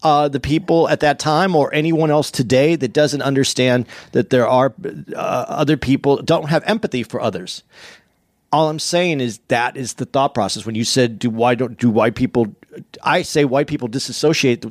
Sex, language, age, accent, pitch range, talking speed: male, English, 40-59, American, 120-160 Hz, 190 wpm